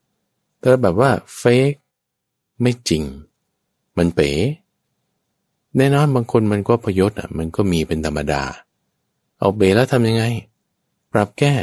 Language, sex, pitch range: Thai, male, 80-110 Hz